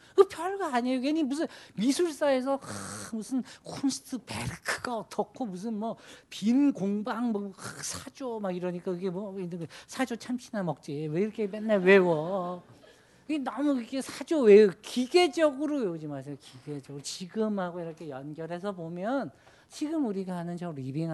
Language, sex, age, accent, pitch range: Korean, male, 40-59, native, 150-230 Hz